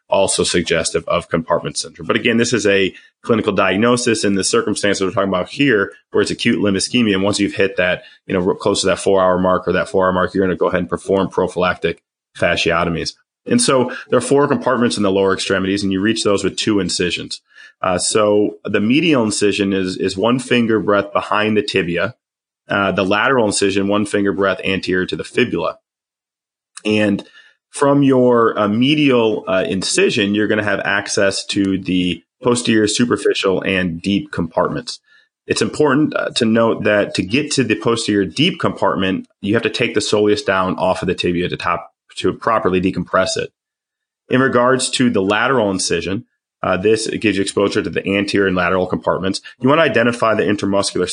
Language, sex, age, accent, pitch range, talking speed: English, male, 30-49, American, 95-115 Hz, 190 wpm